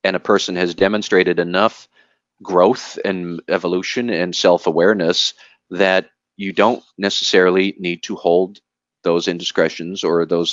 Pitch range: 85-100 Hz